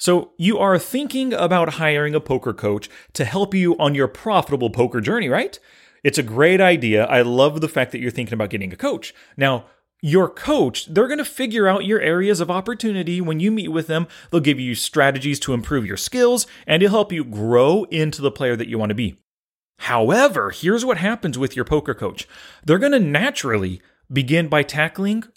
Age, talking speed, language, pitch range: 30-49, 205 wpm, English, 125-180 Hz